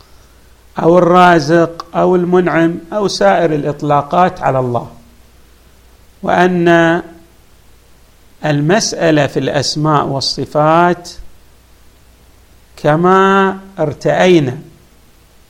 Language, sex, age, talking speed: Arabic, male, 50-69, 60 wpm